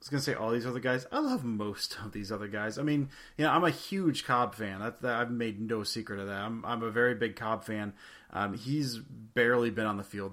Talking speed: 275 wpm